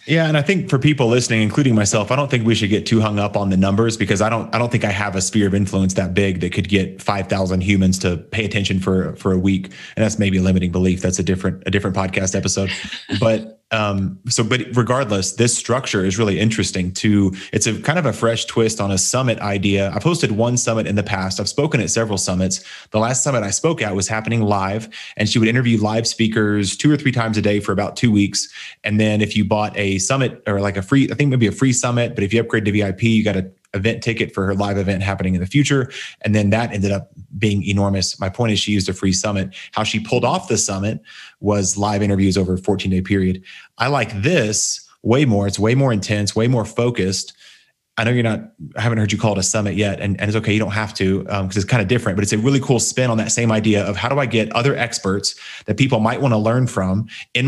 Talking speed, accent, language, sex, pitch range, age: 260 wpm, American, English, male, 100-115 Hz, 30-49